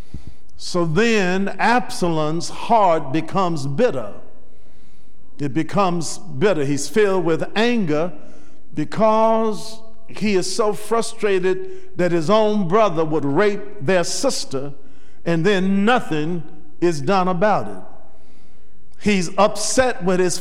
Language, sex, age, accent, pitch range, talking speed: English, male, 50-69, American, 165-215 Hz, 110 wpm